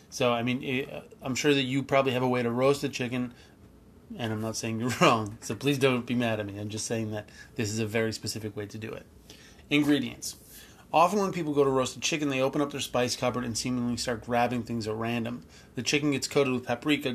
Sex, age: male, 30-49